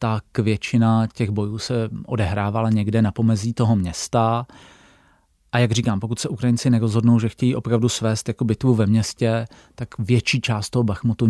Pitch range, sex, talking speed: 110-120 Hz, male, 165 wpm